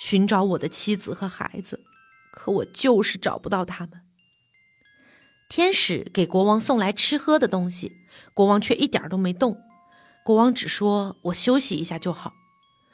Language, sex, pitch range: Chinese, female, 185-275 Hz